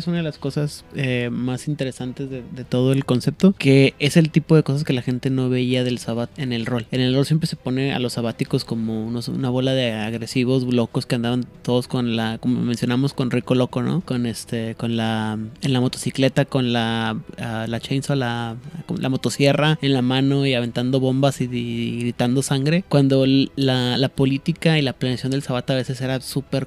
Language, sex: Spanish, male